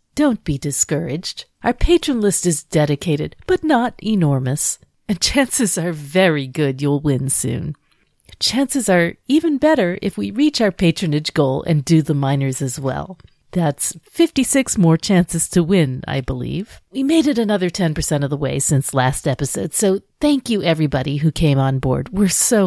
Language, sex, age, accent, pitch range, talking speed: English, female, 50-69, American, 145-220 Hz, 170 wpm